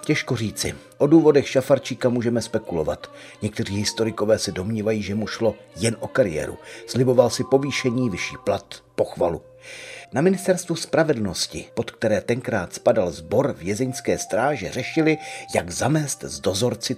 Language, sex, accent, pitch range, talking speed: Czech, male, native, 110-140 Hz, 130 wpm